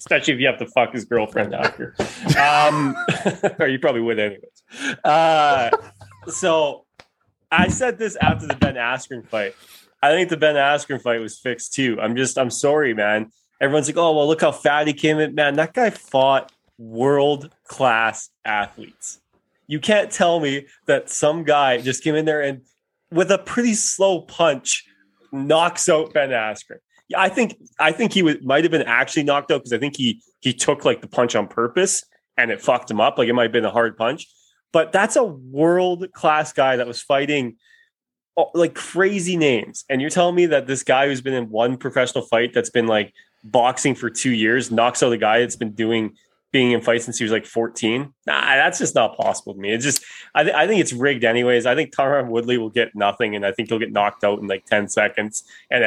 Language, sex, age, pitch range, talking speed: English, male, 20-39, 115-165 Hz, 210 wpm